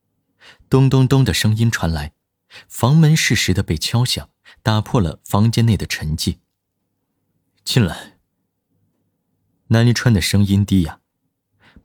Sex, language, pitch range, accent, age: male, Chinese, 90-130 Hz, native, 30-49